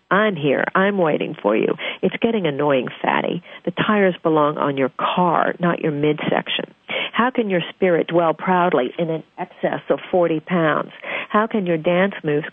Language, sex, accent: English, female, American